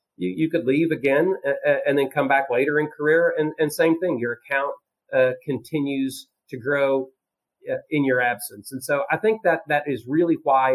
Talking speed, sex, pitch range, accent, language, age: 200 wpm, male, 130-165 Hz, American, English, 40-59